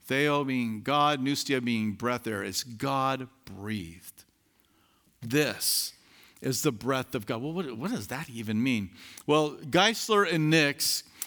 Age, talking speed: 50-69, 145 wpm